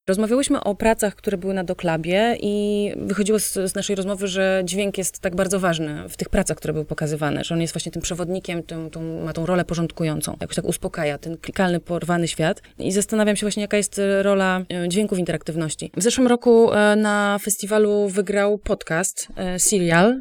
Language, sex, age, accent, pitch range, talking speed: Polish, female, 20-39, native, 185-210 Hz, 180 wpm